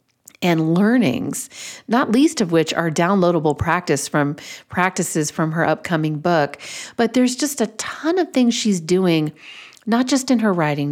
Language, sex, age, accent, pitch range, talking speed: English, female, 40-59, American, 155-195 Hz, 150 wpm